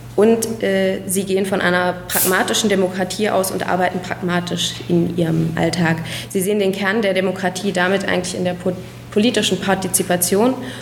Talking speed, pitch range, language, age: 150 wpm, 175-200 Hz, German, 20-39